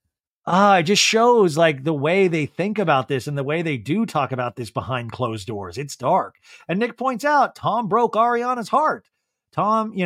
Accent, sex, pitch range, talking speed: American, male, 140-190 Hz, 205 wpm